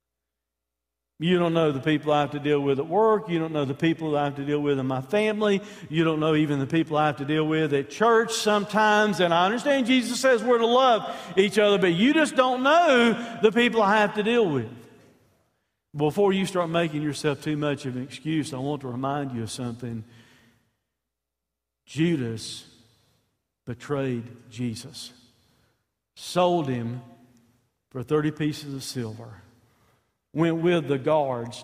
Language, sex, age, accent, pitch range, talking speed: English, male, 50-69, American, 125-195 Hz, 175 wpm